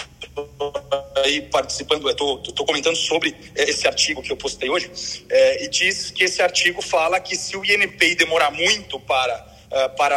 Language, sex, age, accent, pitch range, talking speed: Portuguese, male, 40-59, Brazilian, 145-210 Hz, 175 wpm